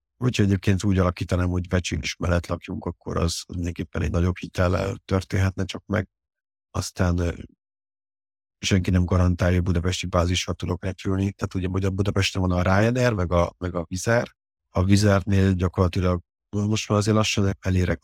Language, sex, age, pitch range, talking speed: Hungarian, male, 50-69, 85-100 Hz, 160 wpm